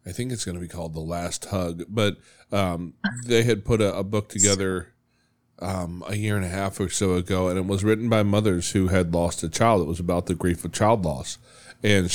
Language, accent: English, American